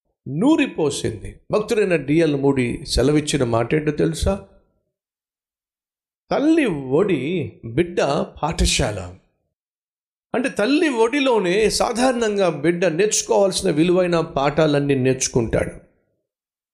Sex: male